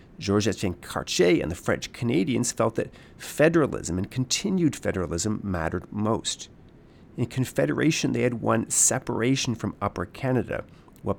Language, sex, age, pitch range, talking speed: English, male, 40-59, 95-125 Hz, 135 wpm